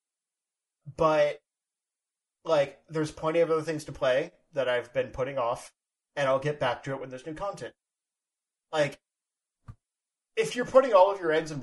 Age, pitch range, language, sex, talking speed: 30-49, 135-175 Hz, English, male, 170 wpm